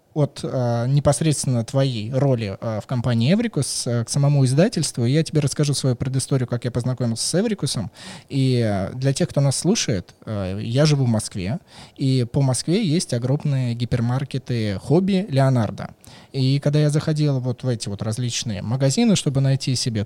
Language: Russian